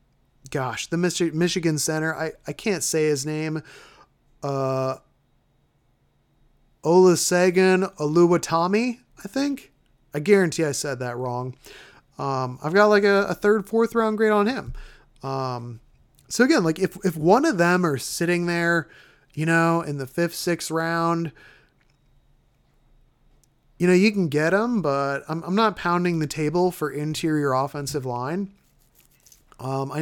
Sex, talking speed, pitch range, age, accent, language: male, 145 wpm, 135-175 Hz, 30-49, American, English